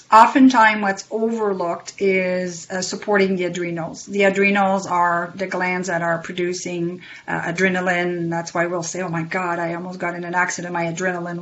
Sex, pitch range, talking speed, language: female, 175-195 Hz, 180 wpm, English